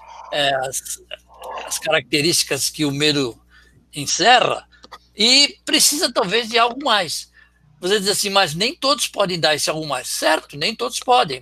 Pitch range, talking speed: 145-215 Hz, 145 wpm